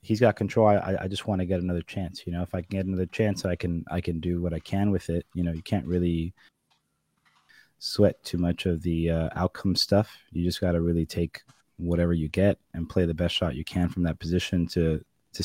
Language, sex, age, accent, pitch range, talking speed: English, male, 20-39, American, 85-100 Hz, 235 wpm